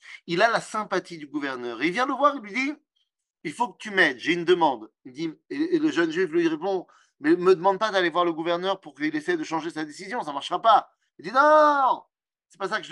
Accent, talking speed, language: French, 275 wpm, French